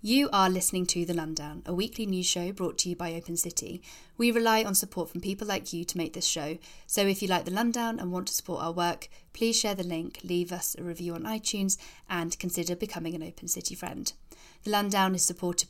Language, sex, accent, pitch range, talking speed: English, female, British, 170-205 Hz, 235 wpm